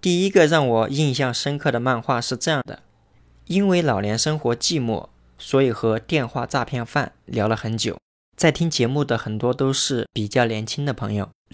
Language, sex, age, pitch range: Chinese, male, 20-39, 110-140 Hz